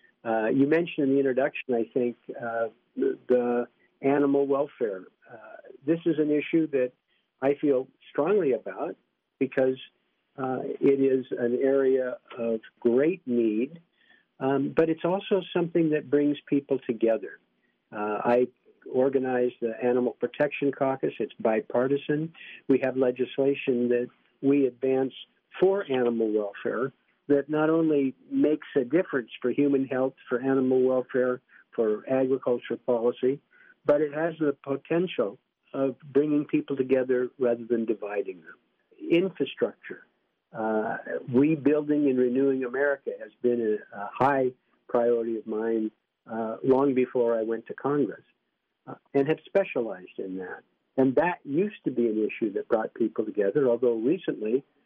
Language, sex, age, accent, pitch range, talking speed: English, male, 50-69, American, 120-145 Hz, 140 wpm